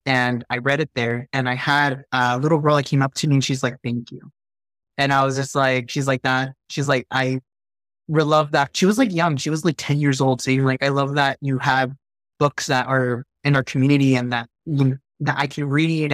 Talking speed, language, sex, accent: 250 wpm, English, male, American